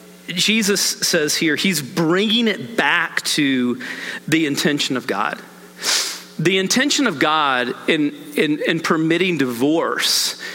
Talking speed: 120 wpm